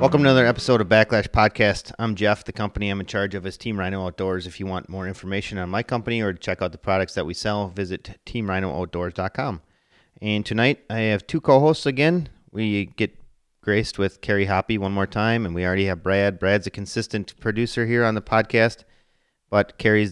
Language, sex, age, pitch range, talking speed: English, male, 30-49, 95-110 Hz, 205 wpm